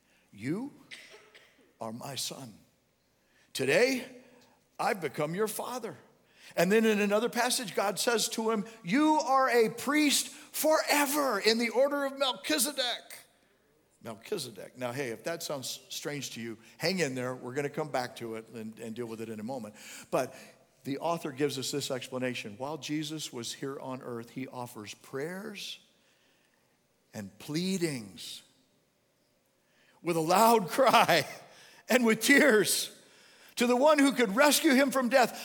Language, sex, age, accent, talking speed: English, male, 50-69, American, 150 wpm